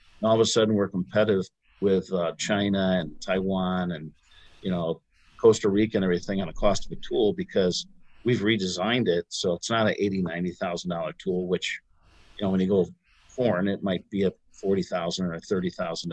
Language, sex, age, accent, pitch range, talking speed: English, male, 50-69, American, 90-105 Hz, 200 wpm